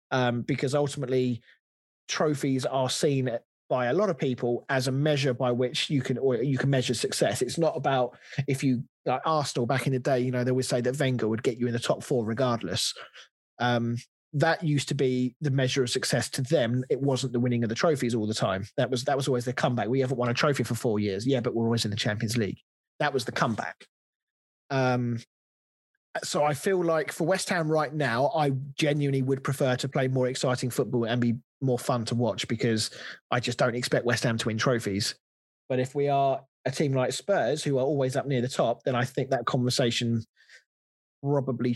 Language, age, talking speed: English, 20-39, 220 wpm